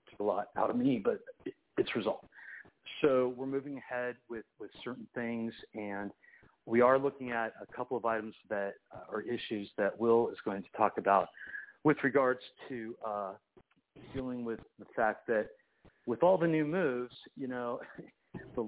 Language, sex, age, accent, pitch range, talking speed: English, male, 40-59, American, 105-125 Hz, 170 wpm